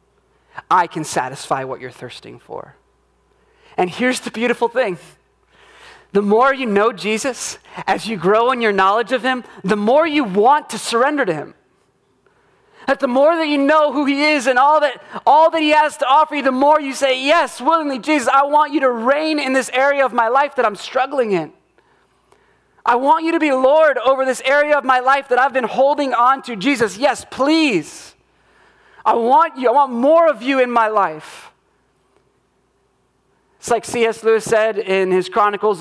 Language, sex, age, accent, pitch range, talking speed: English, male, 30-49, American, 180-280 Hz, 190 wpm